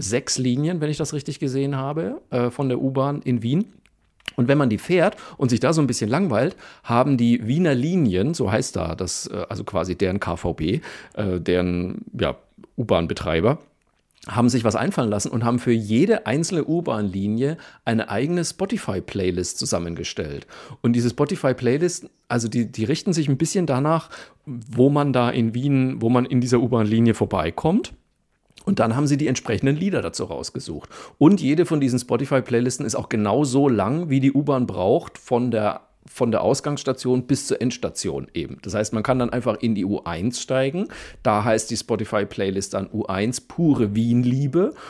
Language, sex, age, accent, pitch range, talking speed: German, male, 40-59, German, 105-135 Hz, 165 wpm